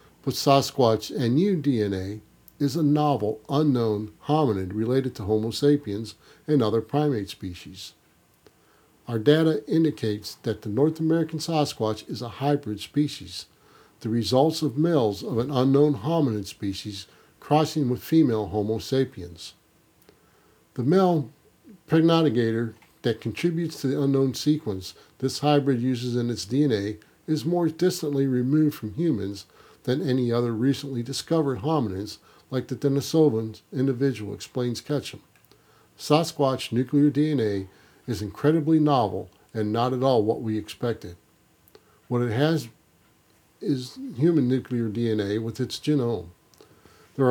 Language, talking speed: English, 130 wpm